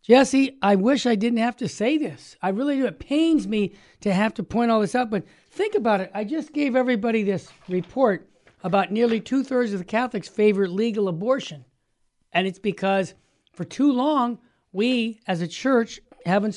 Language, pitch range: English, 185-235 Hz